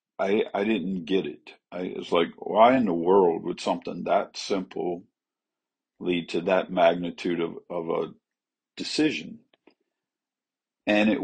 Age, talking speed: 50-69, 140 wpm